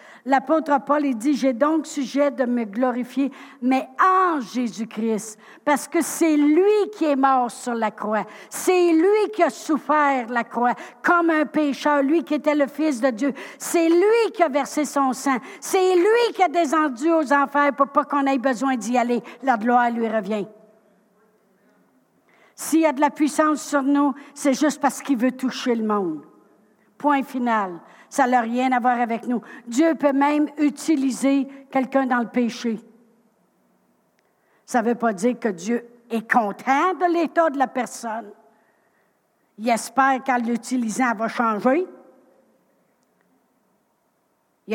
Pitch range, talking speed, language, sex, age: 230-295 Hz, 160 wpm, French, female, 60-79